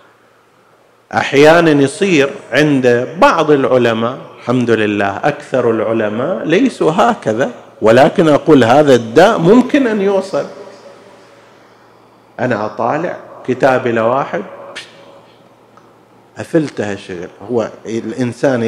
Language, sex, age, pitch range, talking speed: Arabic, male, 50-69, 120-170 Hz, 85 wpm